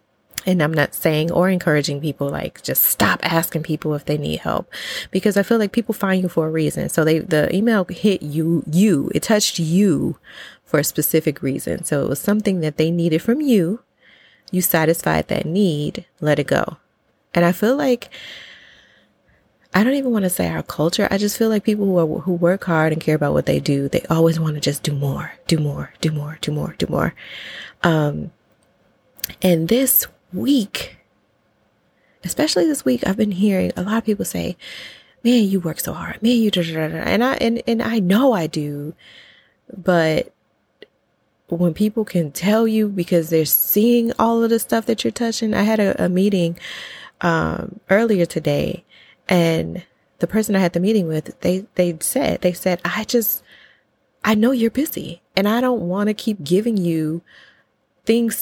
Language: English